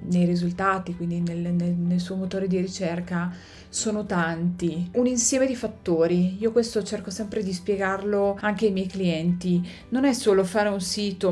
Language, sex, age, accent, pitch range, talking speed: Italian, female, 30-49, native, 180-225 Hz, 170 wpm